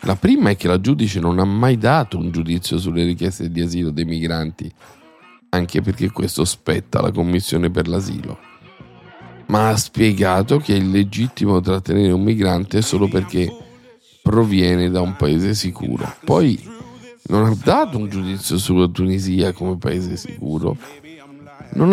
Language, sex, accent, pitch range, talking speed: Italian, male, native, 90-125 Hz, 150 wpm